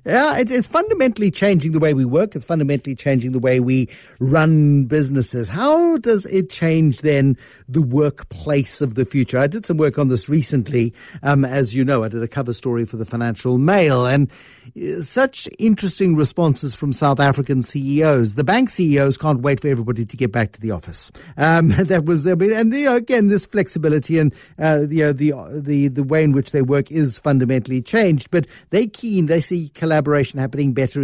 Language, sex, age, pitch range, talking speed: English, male, 50-69, 135-175 Hz, 195 wpm